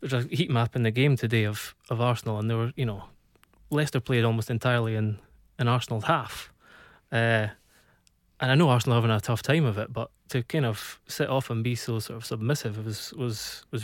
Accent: British